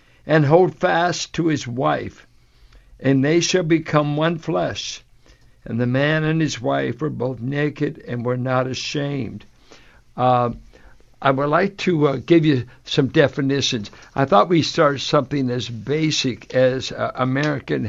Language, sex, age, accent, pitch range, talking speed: English, male, 60-79, American, 125-160 Hz, 155 wpm